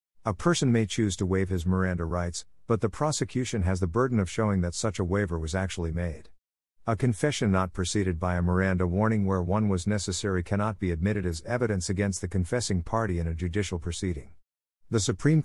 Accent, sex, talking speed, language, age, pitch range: American, male, 200 wpm, English, 50-69, 90-115 Hz